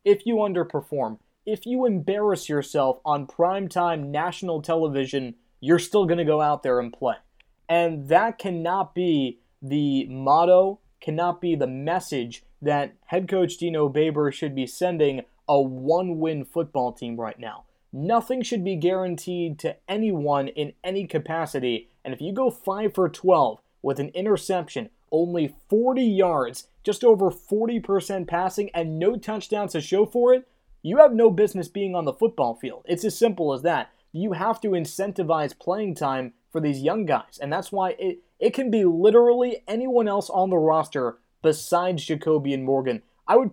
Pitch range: 150-205 Hz